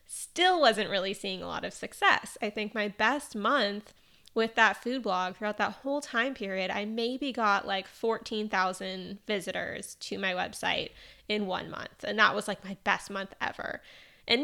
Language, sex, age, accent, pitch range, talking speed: English, female, 20-39, American, 200-260 Hz, 180 wpm